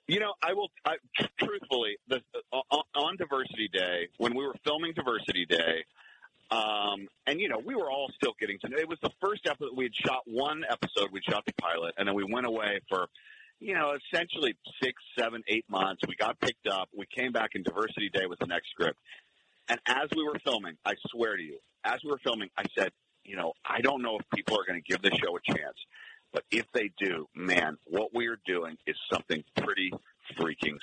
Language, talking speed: English, 215 wpm